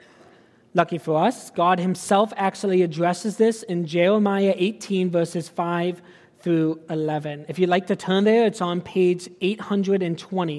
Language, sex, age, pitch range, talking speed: English, male, 30-49, 175-215 Hz, 140 wpm